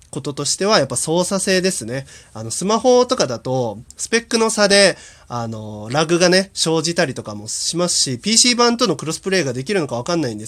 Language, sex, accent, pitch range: Japanese, male, native, 135-200 Hz